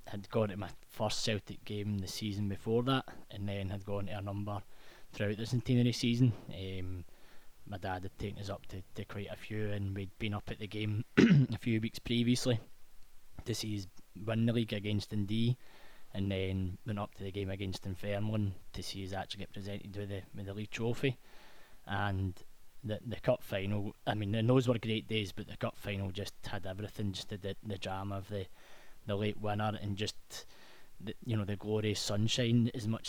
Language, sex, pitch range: English, male, 100-110 Hz